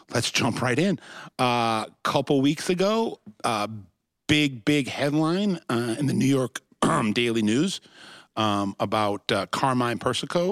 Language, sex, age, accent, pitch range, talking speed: English, male, 50-69, American, 105-135 Hz, 135 wpm